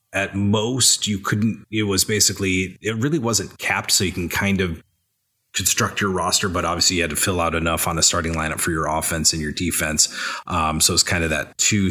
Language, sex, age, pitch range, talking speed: English, male, 30-49, 85-105 Hz, 220 wpm